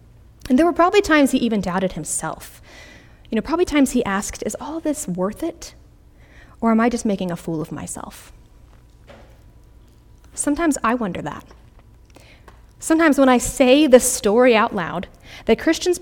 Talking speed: 160 wpm